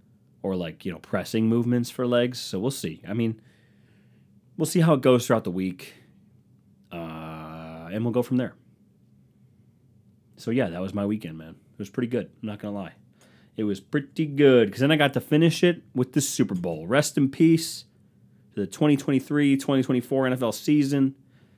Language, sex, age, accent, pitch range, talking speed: English, male, 30-49, American, 110-145 Hz, 185 wpm